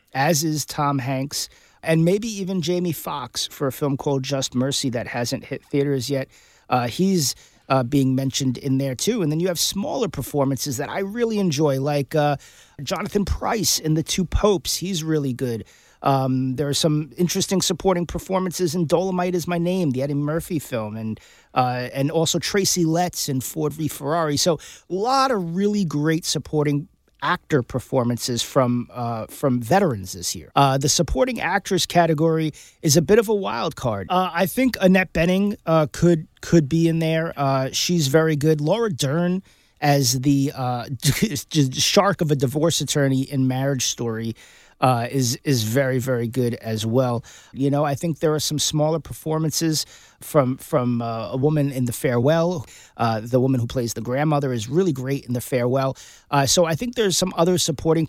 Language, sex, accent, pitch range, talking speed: English, male, American, 130-165 Hz, 185 wpm